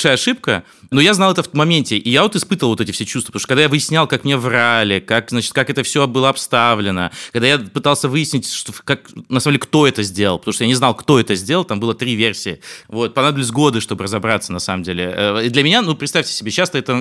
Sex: male